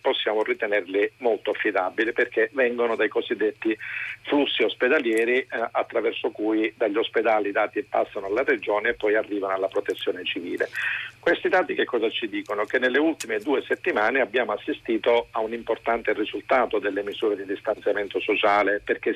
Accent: native